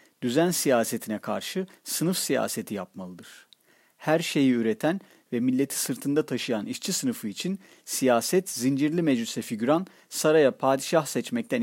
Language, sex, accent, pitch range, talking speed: Turkish, male, native, 125-170 Hz, 120 wpm